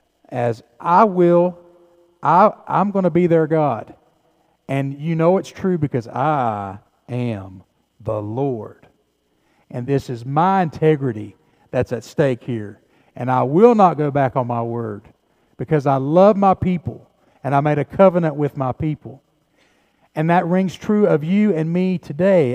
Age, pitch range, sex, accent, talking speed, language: 50-69, 135-185 Hz, male, American, 160 wpm, English